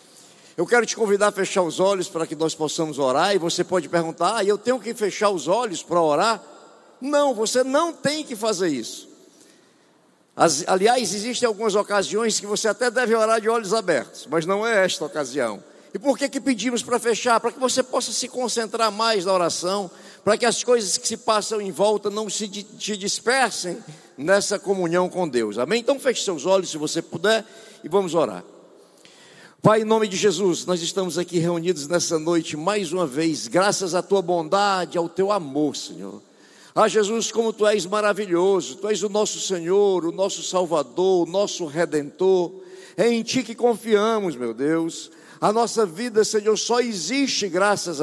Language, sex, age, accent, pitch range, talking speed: Portuguese, male, 60-79, Brazilian, 180-230 Hz, 180 wpm